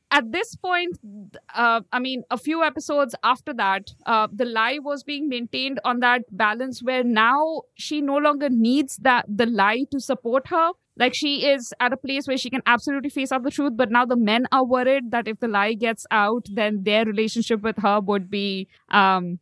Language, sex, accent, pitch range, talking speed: English, female, Indian, 225-280 Hz, 205 wpm